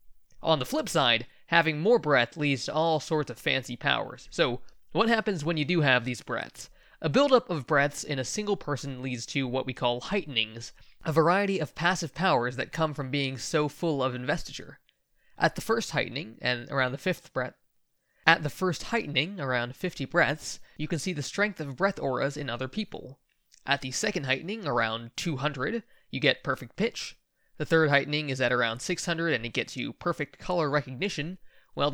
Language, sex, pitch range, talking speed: English, male, 130-170 Hz, 190 wpm